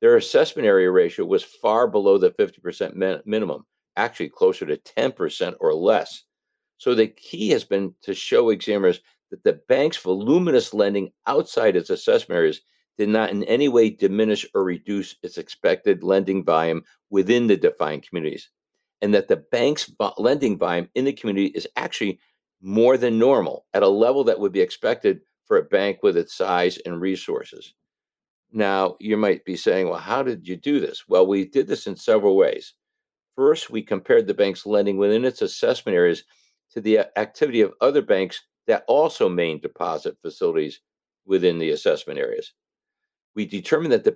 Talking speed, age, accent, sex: 170 wpm, 60-79, American, male